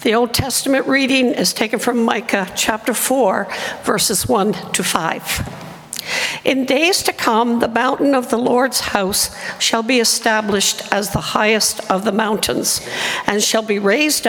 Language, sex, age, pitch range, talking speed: English, female, 60-79, 205-260 Hz, 155 wpm